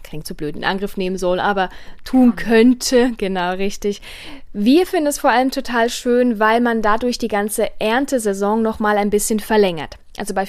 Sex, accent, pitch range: female, German, 195-235 Hz